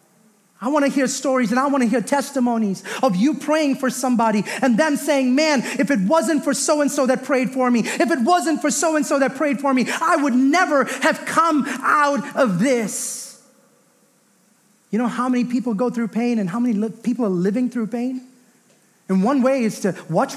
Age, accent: 30-49, American